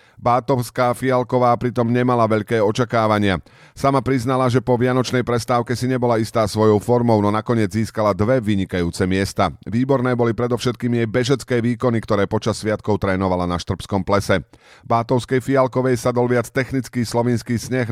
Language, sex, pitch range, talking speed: Slovak, male, 100-125 Hz, 145 wpm